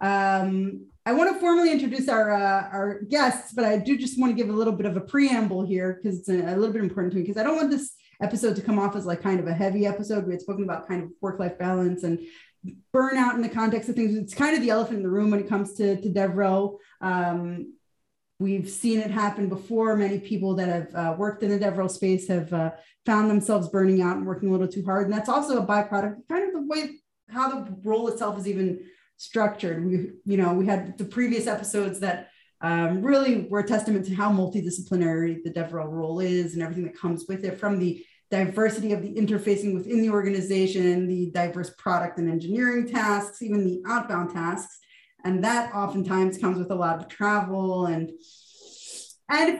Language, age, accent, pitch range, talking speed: English, 30-49, American, 185-220 Hz, 215 wpm